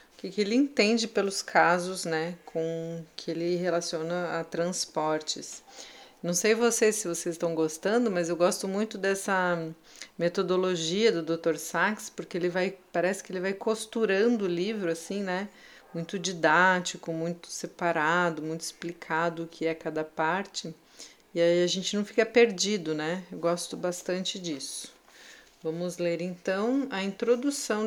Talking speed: 150 wpm